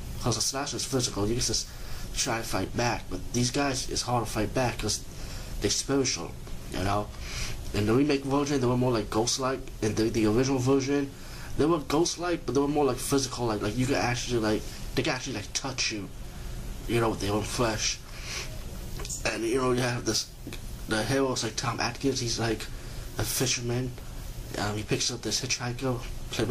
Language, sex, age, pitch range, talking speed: English, male, 20-39, 105-125 Hz, 195 wpm